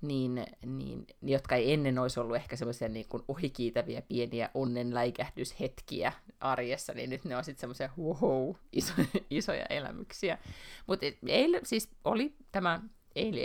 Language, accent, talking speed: Finnish, native, 130 wpm